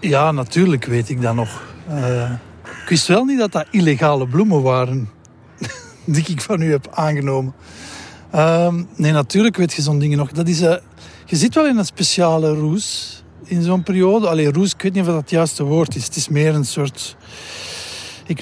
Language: Dutch